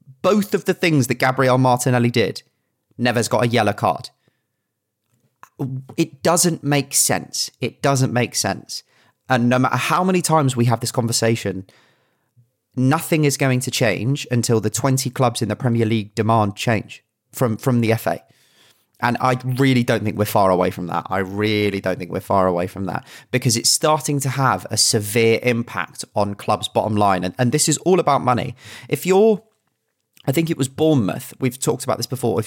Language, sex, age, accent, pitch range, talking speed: English, male, 30-49, British, 110-135 Hz, 190 wpm